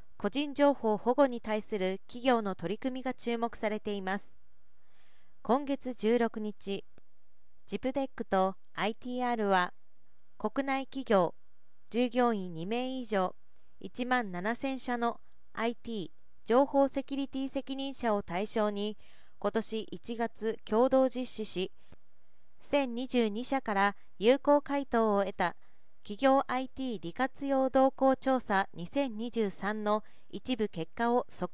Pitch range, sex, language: 195-255 Hz, female, Japanese